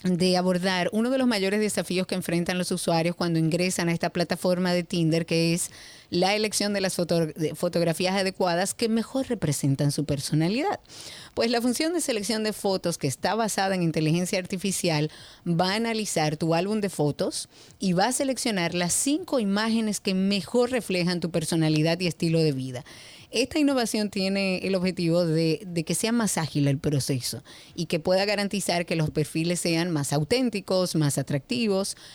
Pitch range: 170-205 Hz